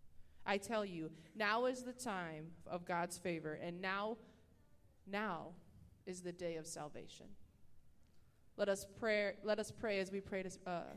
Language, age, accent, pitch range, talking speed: English, 20-39, American, 170-215 Hz, 150 wpm